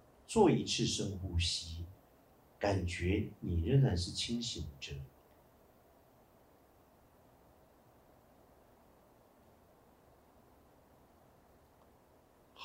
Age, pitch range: 50-69, 85-120 Hz